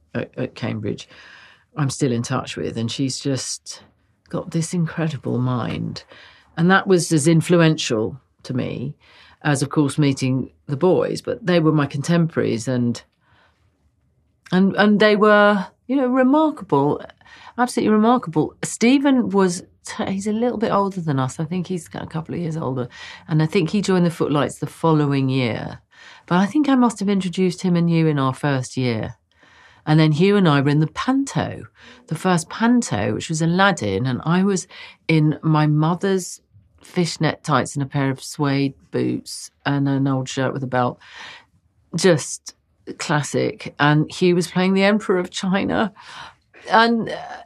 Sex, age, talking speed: female, 40-59, 165 wpm